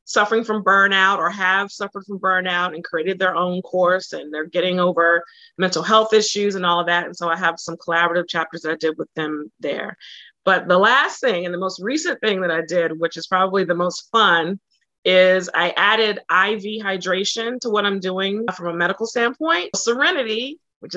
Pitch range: 175-220 Hz